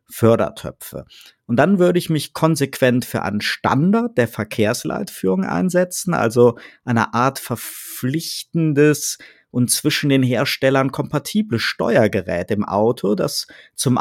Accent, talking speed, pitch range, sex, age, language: German, 115 wpm, 110-150 Hz, male, 50-69, German